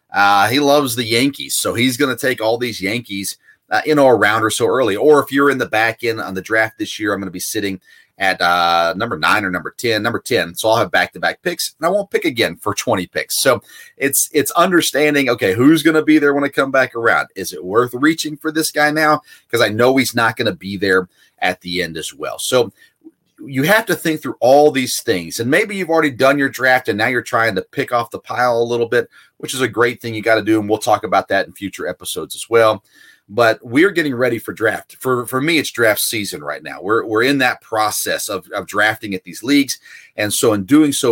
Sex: male